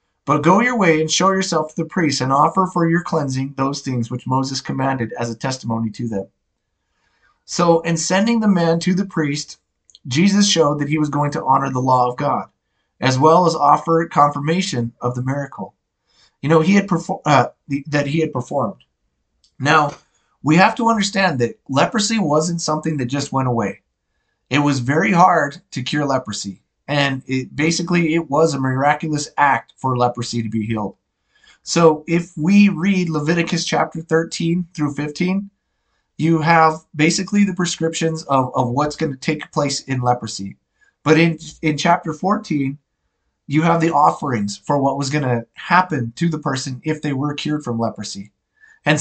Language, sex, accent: English, male, American